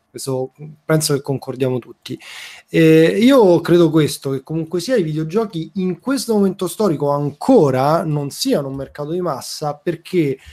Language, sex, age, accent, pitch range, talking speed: Italian, male, 20-39, native, 135-170 Hz, 150 wpm